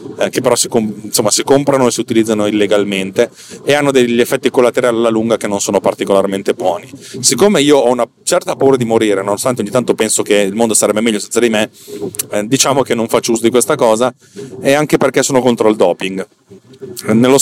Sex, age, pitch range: male, 40-59, 110-140 Hz